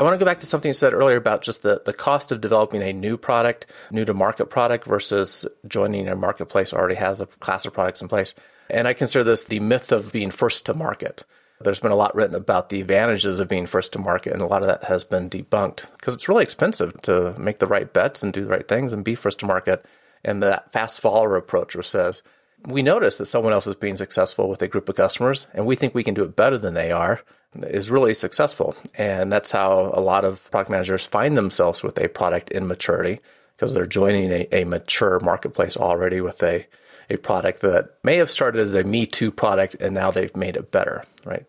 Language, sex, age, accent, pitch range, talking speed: English, male, 30-49, American, 95-125 Hz, 235 wpm